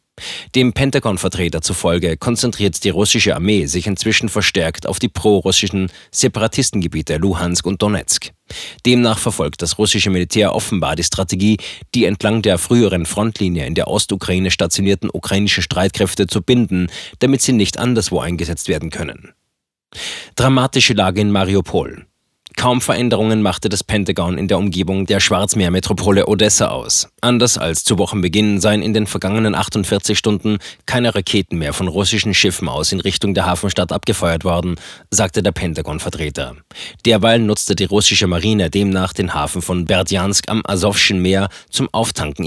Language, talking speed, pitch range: German, 145 wpm, 90-110 Hz